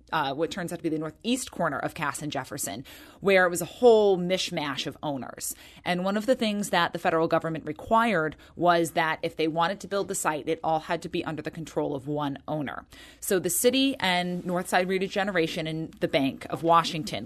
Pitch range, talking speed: 155-185 Hz, 215 wpm